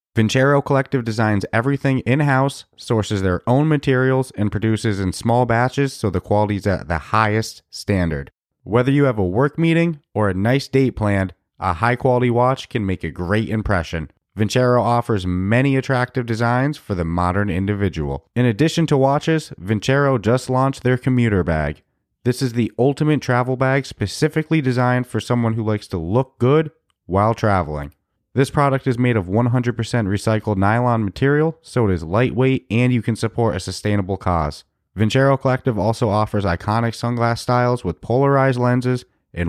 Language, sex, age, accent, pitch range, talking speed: English, male, 30-49, American, 100-135 Hz, 165 wpm